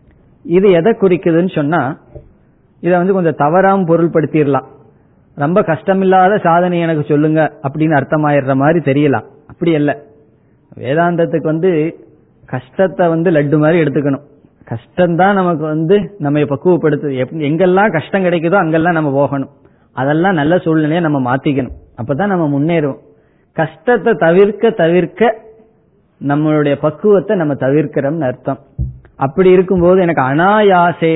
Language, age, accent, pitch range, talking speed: Tamil, 20-39, native, 140-180 Hz, 115 wpm